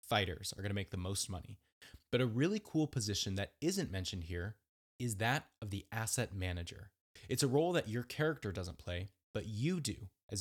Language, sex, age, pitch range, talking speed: English, male, 20-39, 100-130 Hz, 200 wpm